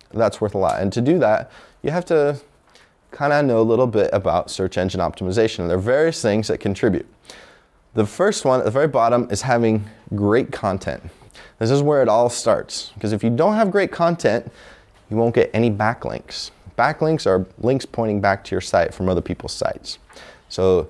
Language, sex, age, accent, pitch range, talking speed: English, male, 20-39, American, 100-130 Hz, 200 wpm